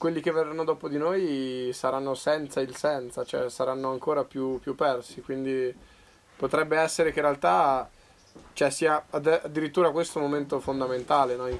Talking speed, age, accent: 145 wpm, 10-29, native